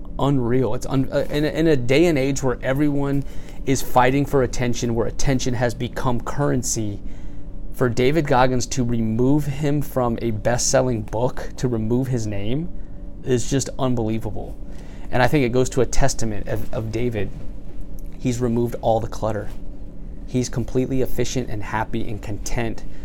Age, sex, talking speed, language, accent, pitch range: 20-39, male, 155 wpm, English, American, 105-130 Hz